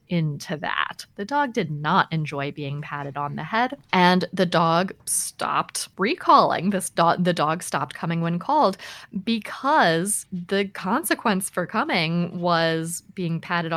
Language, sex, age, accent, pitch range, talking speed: English, female, 20-39, American, 155-200 Hz, 145 wpm